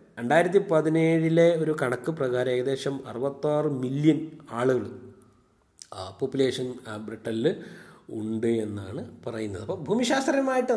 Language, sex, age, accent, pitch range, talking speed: Malayalam, male, 30-49, native, 110-170 Hz, 90 wpm